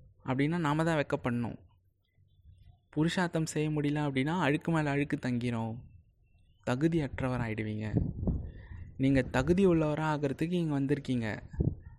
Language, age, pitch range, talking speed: Tamil, 20-39, 120-160 Hz, 105 wpm